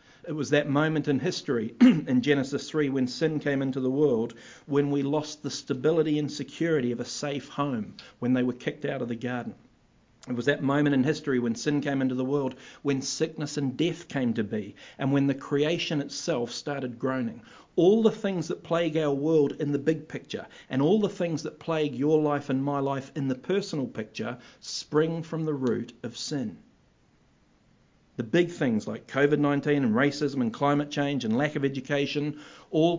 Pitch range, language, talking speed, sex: 130-160 Hz, English, 195 wpm, male